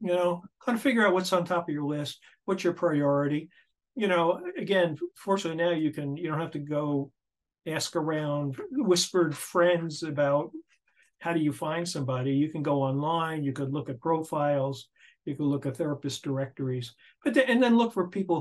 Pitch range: 150-185 Hz